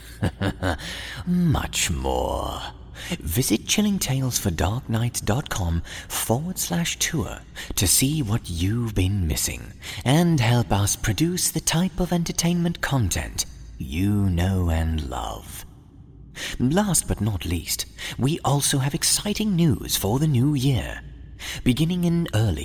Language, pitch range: English, 95-140 Hz